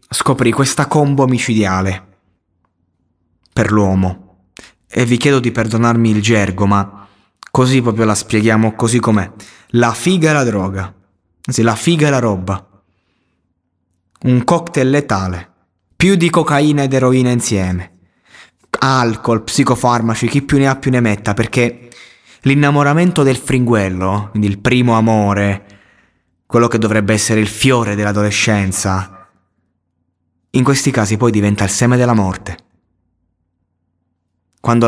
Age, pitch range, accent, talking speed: 20-39, 90-120 Hz, native, 125 wpm